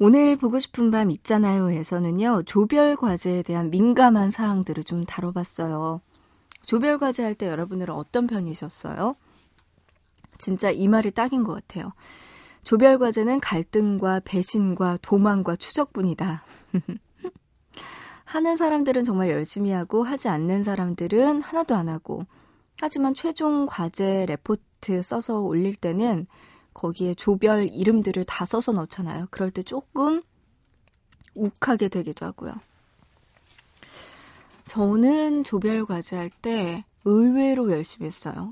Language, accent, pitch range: Korean, native, 175-230 Hz